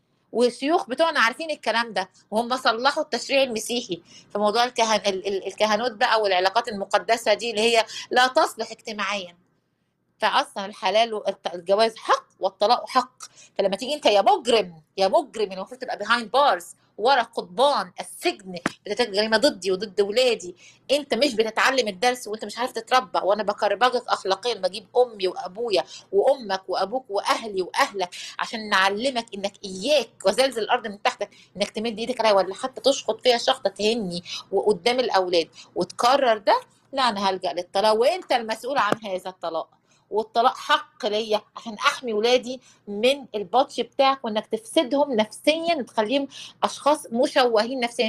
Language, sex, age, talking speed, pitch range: Arabic, female, 30-49, 140 wpm, 195-255 Hz